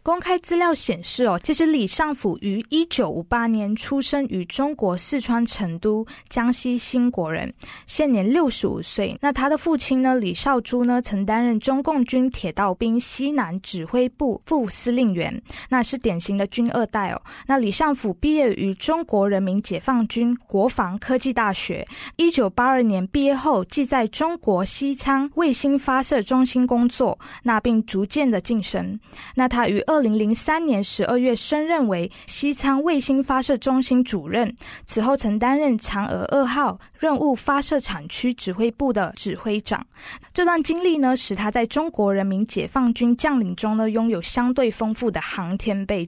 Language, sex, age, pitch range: Chinese, female, 20-39, 210-275 Hz